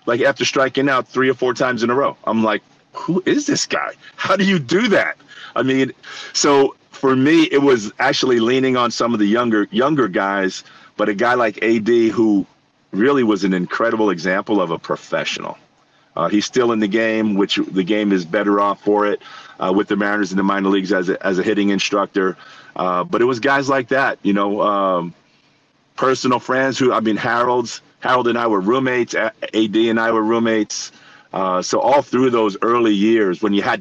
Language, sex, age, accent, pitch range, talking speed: English, male, 40-59, American, 100-125 Hz, 205 wpm